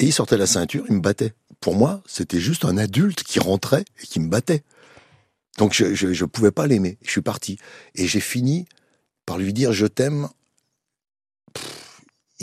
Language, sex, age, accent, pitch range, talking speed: French, male, 60-79, French, 85-120 Hz, 200 wpm